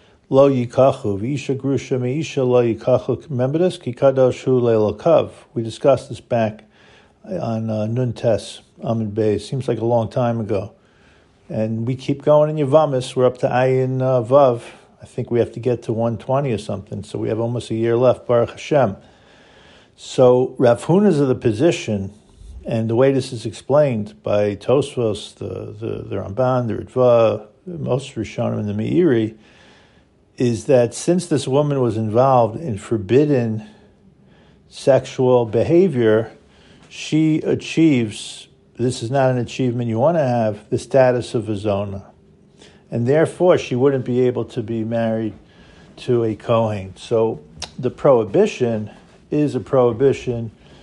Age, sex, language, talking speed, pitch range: 50-69, male, English, 140 wpm, 110-130 Hz